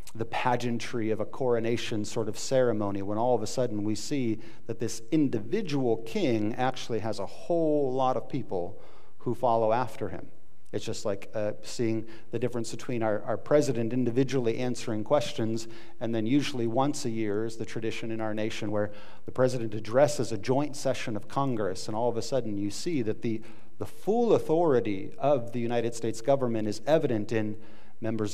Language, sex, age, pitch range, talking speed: English, male, 40-59, 110-130 Hz, 180 wpm